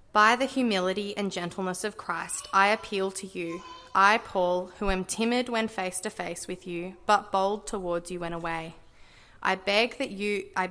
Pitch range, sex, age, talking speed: 175-205 Hz, female, 20-39, 185 wpm